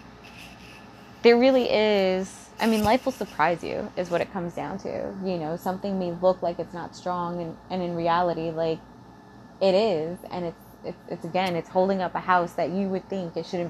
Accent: American